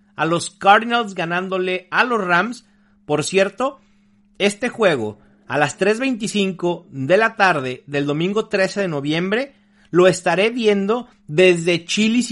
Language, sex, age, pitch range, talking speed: English, male, 40-59, 160-205 Hz, 130 wpm